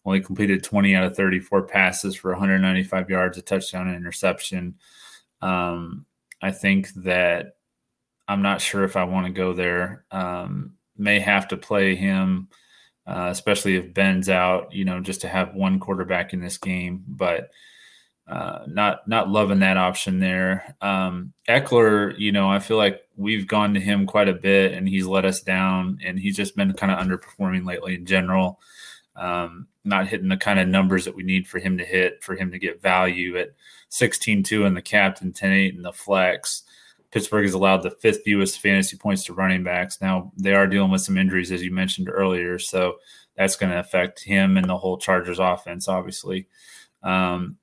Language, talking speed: English, 190 wpm